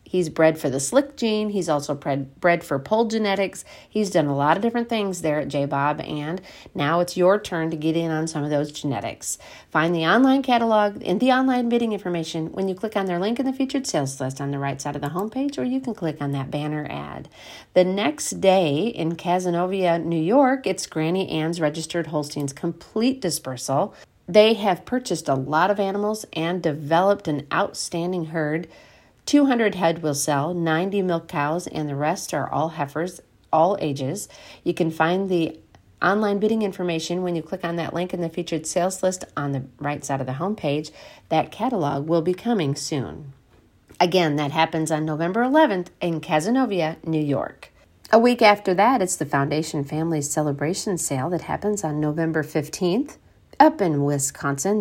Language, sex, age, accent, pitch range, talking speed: English, female, 40-59, American, 150-190 Hz, 185 wpm